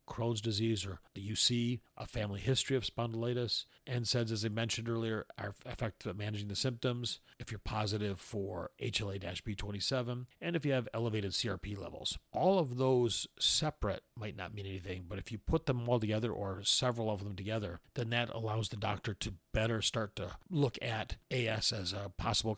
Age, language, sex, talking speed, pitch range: 40-59, English, male, 185 wpm, 100-120 Hz